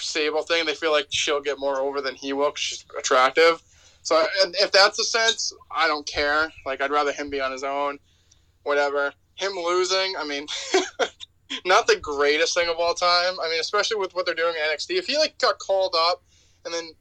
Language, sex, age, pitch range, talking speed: English, male, 20-39, 140-185 Hz, 210 wpm